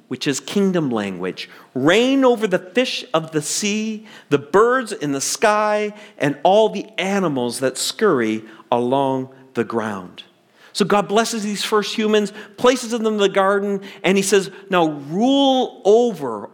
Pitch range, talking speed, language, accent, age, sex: 150-215 Hz, 150 wpm, English, American, 50-69, male